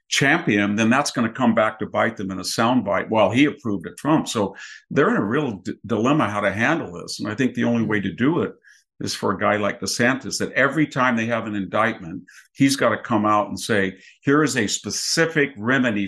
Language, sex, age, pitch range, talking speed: English, male, 50-69, 100-125 Hz, 240 wpm